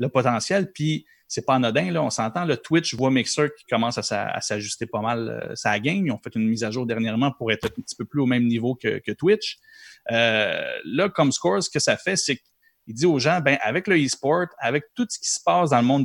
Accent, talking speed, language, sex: Canadian, 250 wpm, French, male